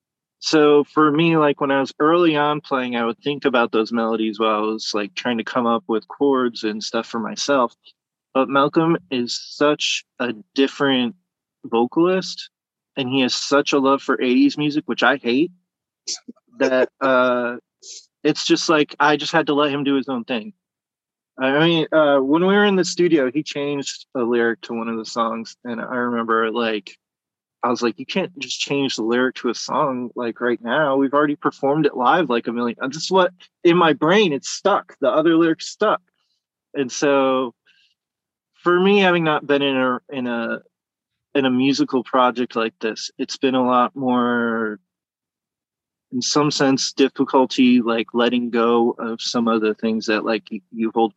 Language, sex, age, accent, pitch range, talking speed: English, male, 20-39, American, 115-150 Hz, 185 wpm